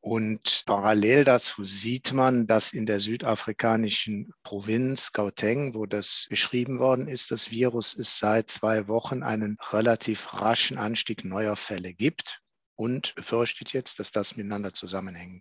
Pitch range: 110-125 Hz